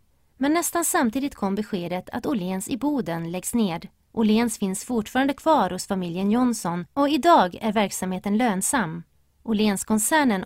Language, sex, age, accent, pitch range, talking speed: Swedish, female, 30-49, native, 190-250 Hz, 145 wpm